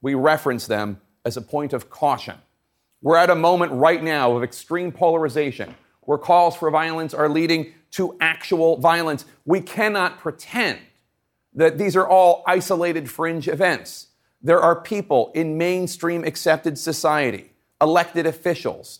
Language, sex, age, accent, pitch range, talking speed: English, male, 40-59, American, 135-175 Hz, 140 wpm